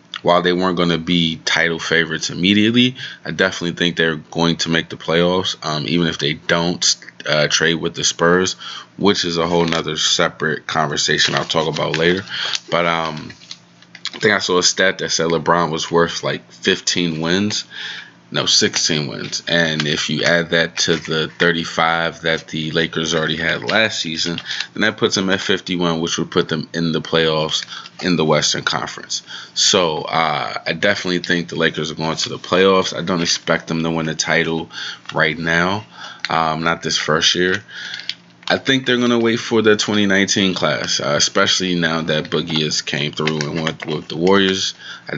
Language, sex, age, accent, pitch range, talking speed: English, male, 20-39, American, 80-90 Hz, 185 wpm